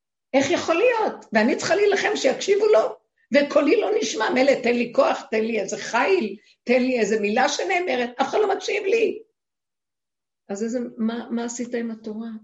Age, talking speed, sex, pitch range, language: 50-69, 175 wpm, female, 190-250 Hz, Hebrew